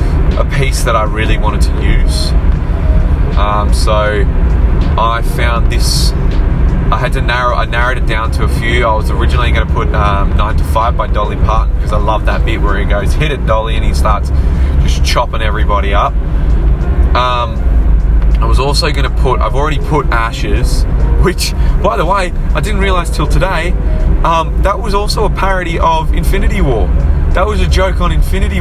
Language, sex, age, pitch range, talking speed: English, male, 20-39, 70-75 Hz, 185 wpm